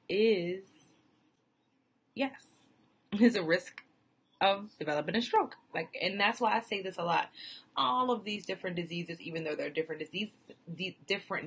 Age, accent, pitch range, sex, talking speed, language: 20-39, American, 155-205 Hz, female, 155 wpm, English